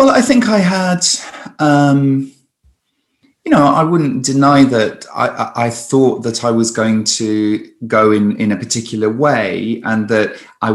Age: 30-49